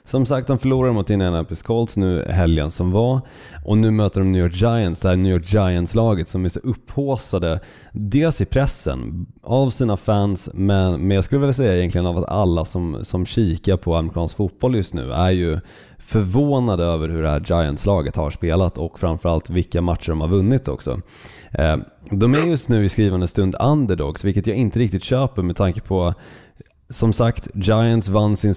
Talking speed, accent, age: 185 wpm, native, 30-49